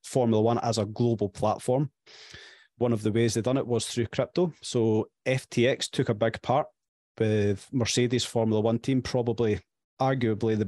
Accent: British